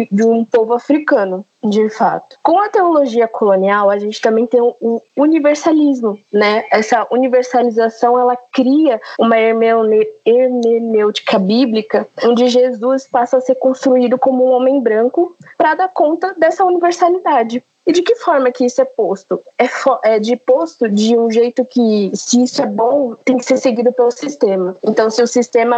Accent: Brazilian